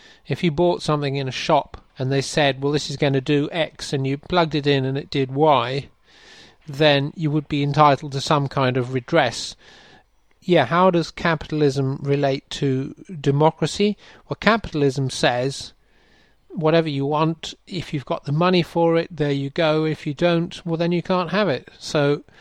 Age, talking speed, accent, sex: 40-59, 185 wpm, British, male